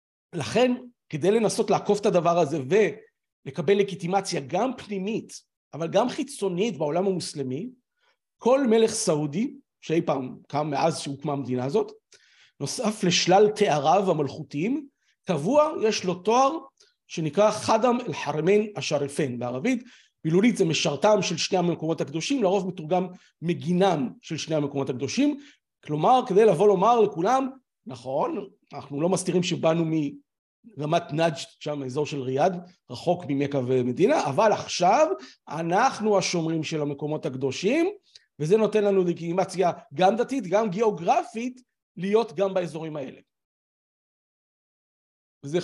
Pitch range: 155-225 Hz